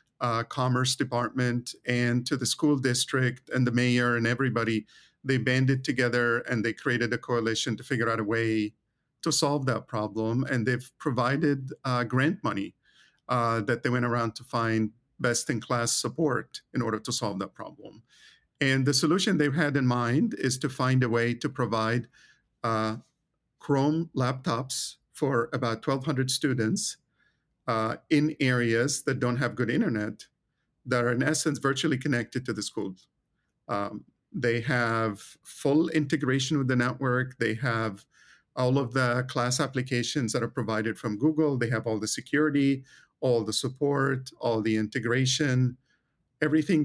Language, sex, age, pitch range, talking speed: English, male, 50-69, 115-135 Hz, 160 wpm